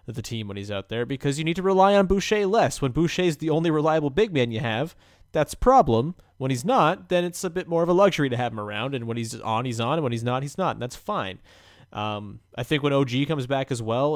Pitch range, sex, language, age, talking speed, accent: 110-145 Hz, male, English, 30-49, 280 wpm, American